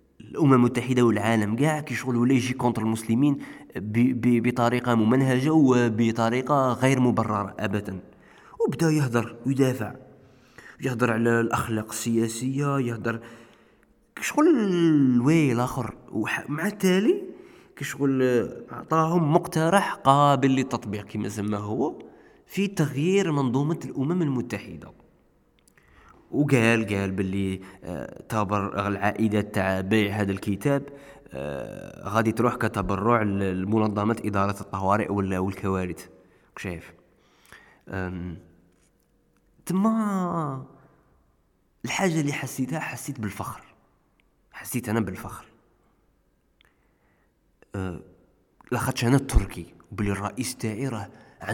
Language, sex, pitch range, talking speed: Arabic, male, 100-135 Hz, 85 wpm